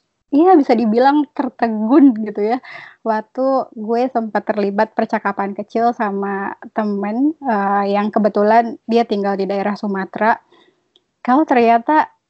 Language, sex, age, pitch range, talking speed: Indonesian, female, 20-39, 205-235 Hz, 115 wpm